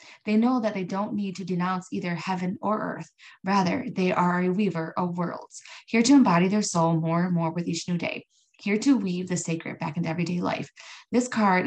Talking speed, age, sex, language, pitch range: 215 wpm, 20-39, female, English, 170-195 Hz